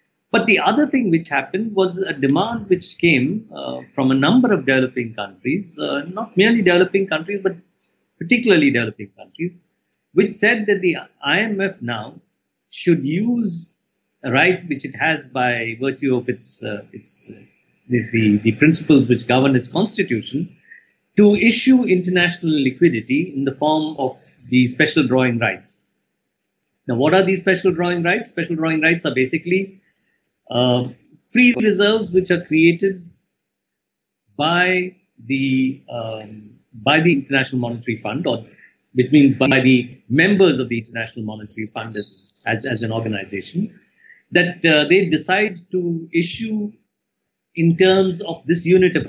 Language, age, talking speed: English, 50-69, 145 wpm